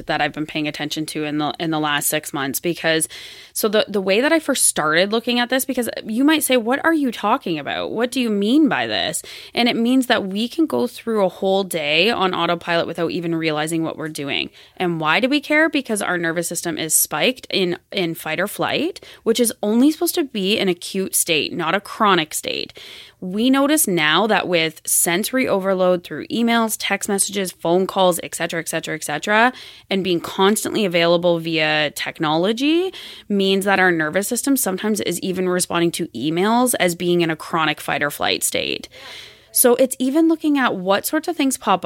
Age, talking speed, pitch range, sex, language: 20-39, 205 wpm, 165-240 Hz, female, English